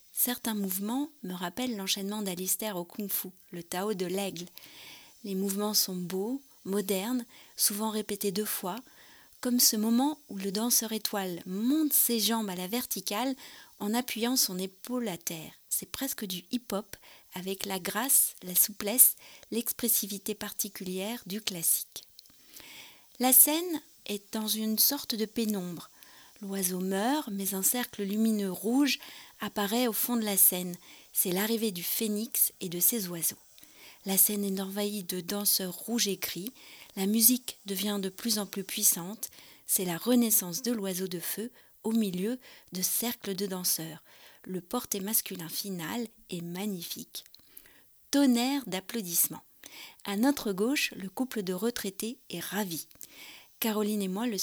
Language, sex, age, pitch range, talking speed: French, female, 30-49, 190-240 Hz, 145 wpm